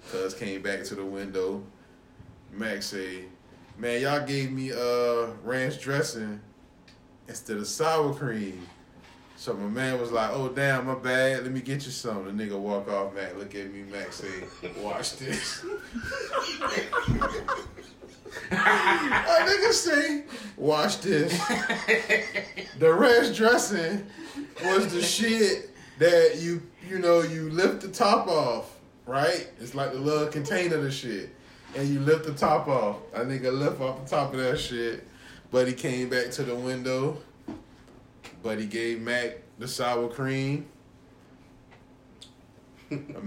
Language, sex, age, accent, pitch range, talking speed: English, male, 20-39, American, 120-155 Hz, 145 wpm